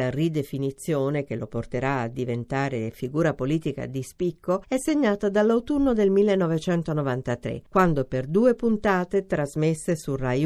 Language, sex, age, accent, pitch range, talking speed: Italian, female, 50-69, native, 135-195 Hz, 125 wpm